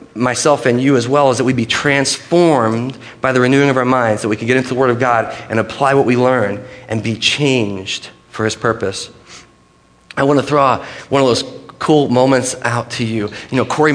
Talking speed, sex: 220 wpm, male